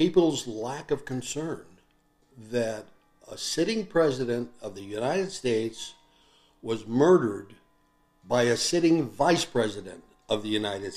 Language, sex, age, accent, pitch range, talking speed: English, male, 60-79, American, 115-160 Hz, 120 wpm